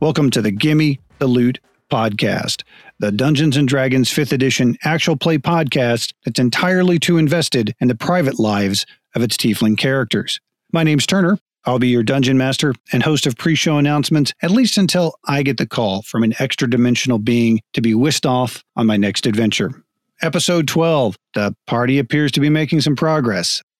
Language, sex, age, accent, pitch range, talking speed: English, male, 40-59, American, 120-155 Hz, 175 wpm